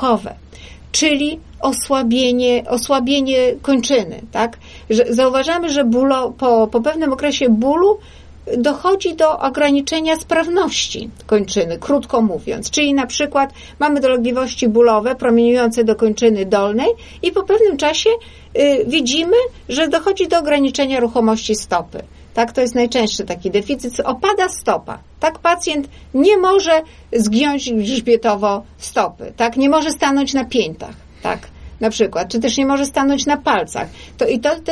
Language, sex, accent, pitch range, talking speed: Polish, female, native, 230-305 Hz, 130 wpm